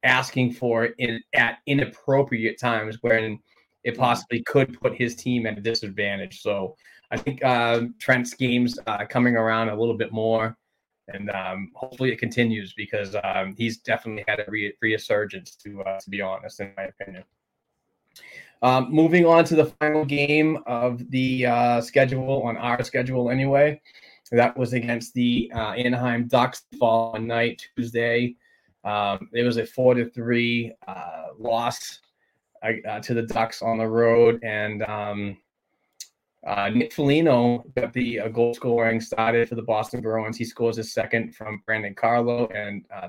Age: 20-39